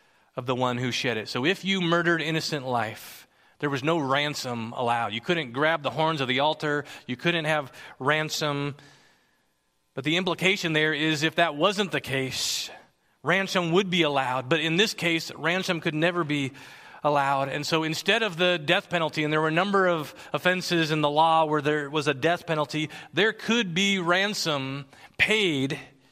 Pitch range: 155-205 Hz